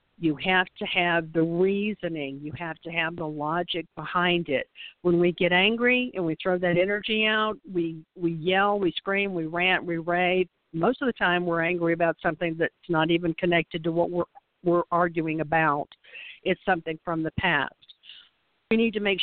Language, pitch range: English, 165-200 Hz